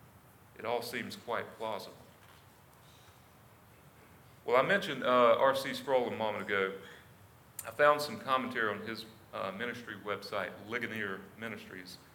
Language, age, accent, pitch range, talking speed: English, 40-59, American, 105-135 Hz, 125 wpm